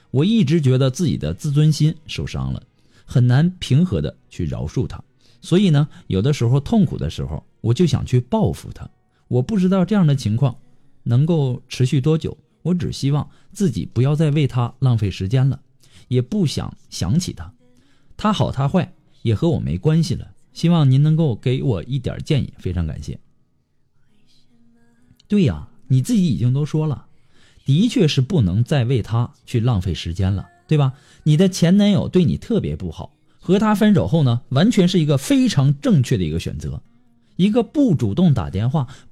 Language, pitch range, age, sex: Chinese, 125-185 Hz, 50-69, male